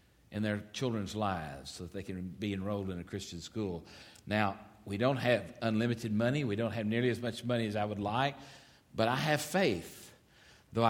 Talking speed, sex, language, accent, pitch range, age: 200 wpm, male, English, American, 115-170 Hz, 50-69